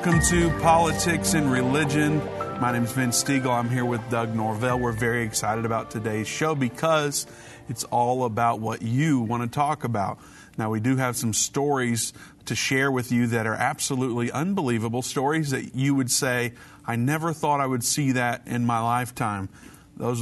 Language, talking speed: English, 180 wpm